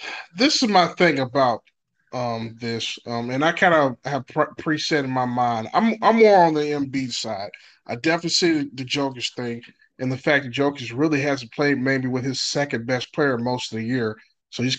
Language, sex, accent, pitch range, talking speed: English, male, American, 130-170 Hz, 205 wpm